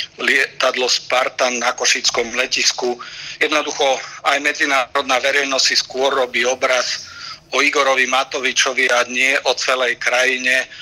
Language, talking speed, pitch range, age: Slovak, 115 wpm, 125-140 Hz, 50-69